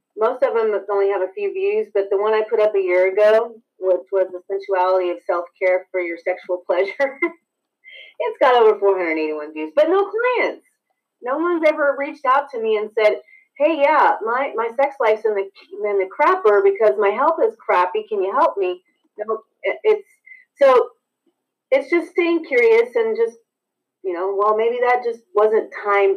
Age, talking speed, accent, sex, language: 30-49, 190 wpm, American, female, English